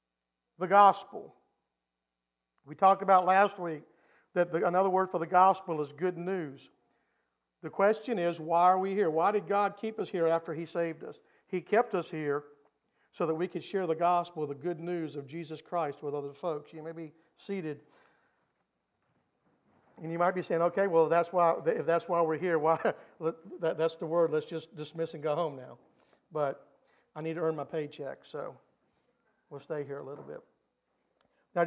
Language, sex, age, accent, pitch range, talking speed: English, male, 50-69, American, 160-195 Hz, 190 wpm